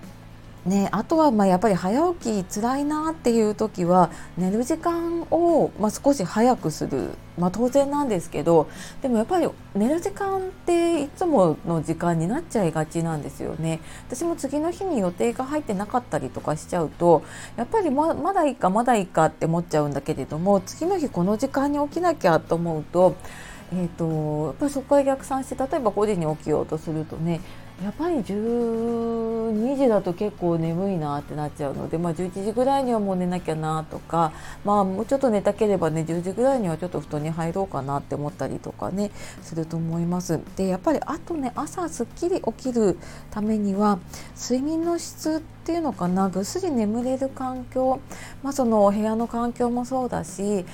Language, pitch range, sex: Japanese, 170-265 Hz, female